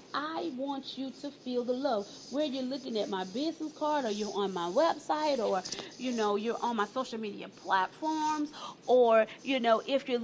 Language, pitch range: English, 225-310 Hz